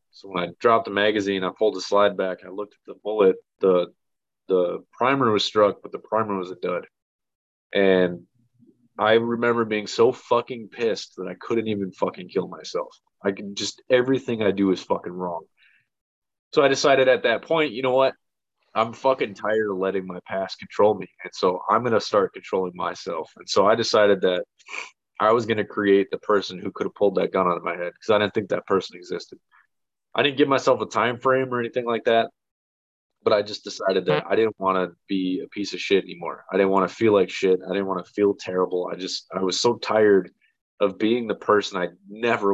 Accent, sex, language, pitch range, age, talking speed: American, male, English, 95-115 Hz, 20-39, 220 wpm